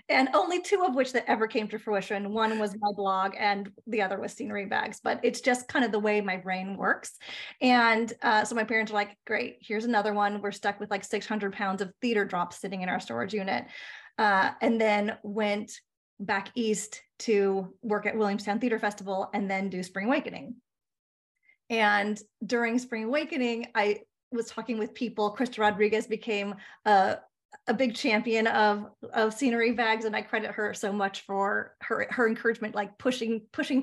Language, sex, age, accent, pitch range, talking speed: English, female, 30-49, American, 205-235 Hz, 185 wpm